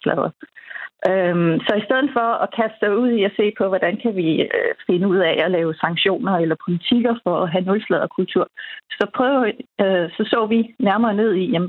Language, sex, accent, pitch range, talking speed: Danish, female, native, 185-240 Hz, 190 wpm